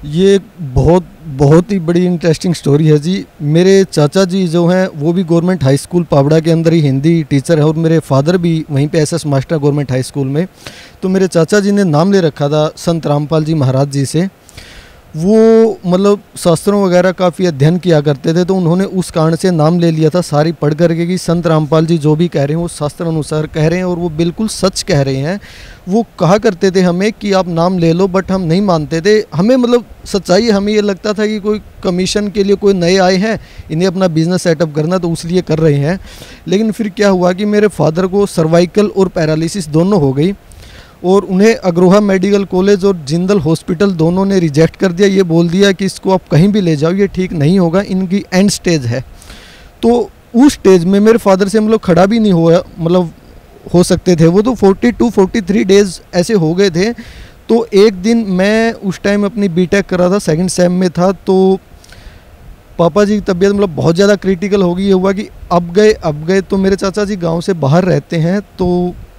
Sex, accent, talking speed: male, native, 215 wpm